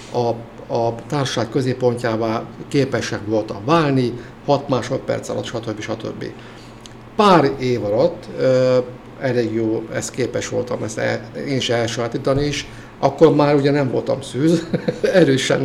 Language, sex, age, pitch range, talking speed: Hungarian, male, 50-69, 120-145 Hz, 125 wpm